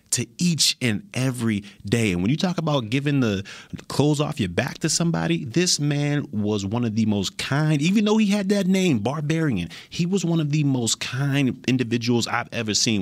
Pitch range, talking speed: 95-145 Hz, 205 wpm